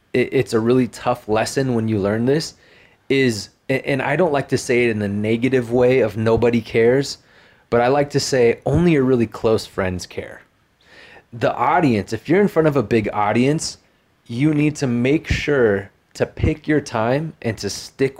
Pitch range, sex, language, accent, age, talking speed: 110-135 Hz, male, English, American, 30-49, 190 wpm